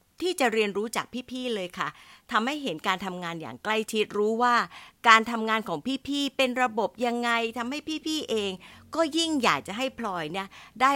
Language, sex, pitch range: Thai, female, 180-255 Hz